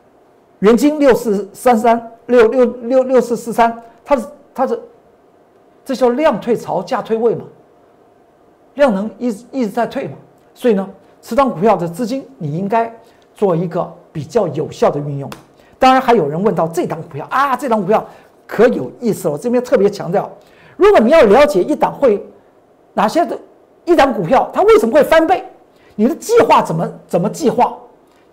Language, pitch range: Chinese, 195-290 Hz